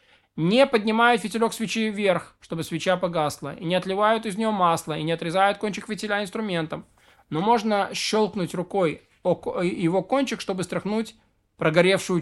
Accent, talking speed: native, 140 wpm